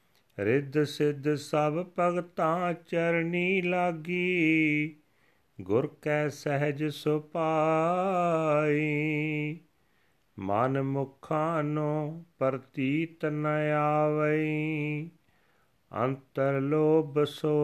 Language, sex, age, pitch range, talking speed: Punjabi, male, 40-59, 145-160 Hz, 70 wpm